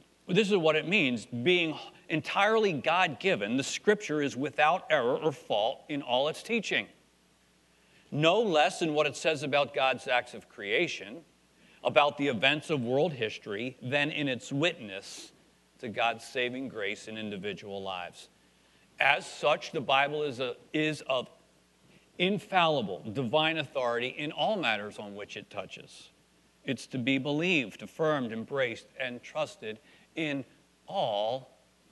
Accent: American